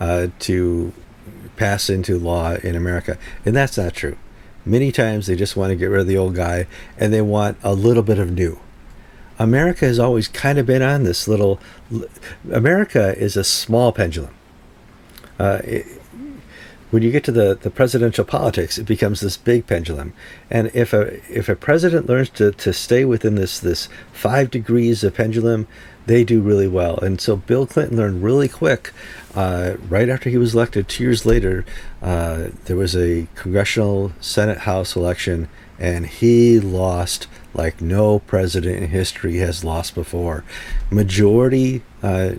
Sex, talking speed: male, 165 wpm